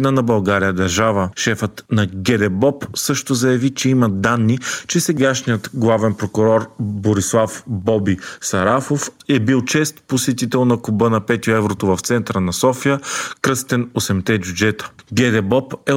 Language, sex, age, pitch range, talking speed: Bulgarian, male, 40-59, 105-130 Hz, 135 wpm